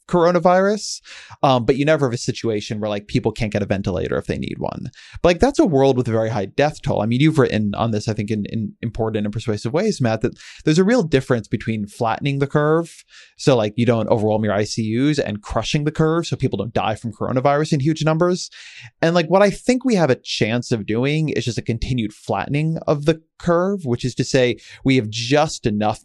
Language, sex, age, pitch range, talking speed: English, male, 30-49, 110-140 Hz, 235 wpm